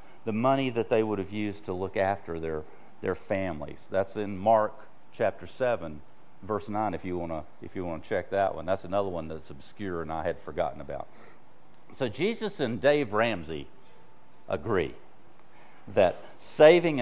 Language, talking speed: English, 160 wpm